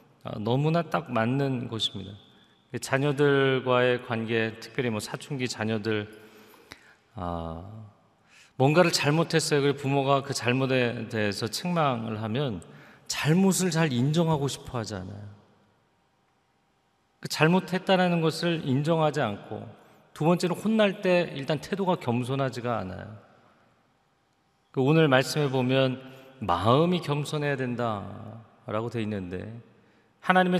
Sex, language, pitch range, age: male, Korean, 110-145 Hz, 40-59